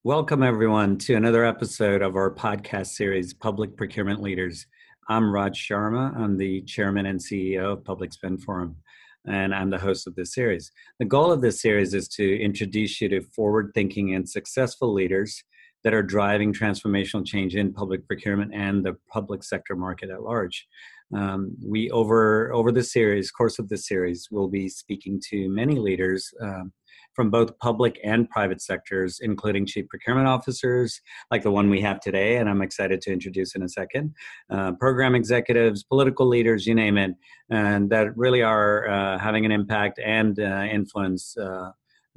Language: English